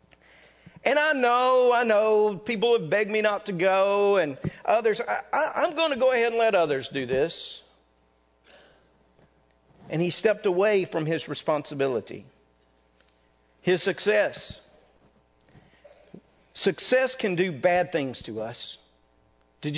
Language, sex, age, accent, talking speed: English, male, 50-69, American, 125 wpm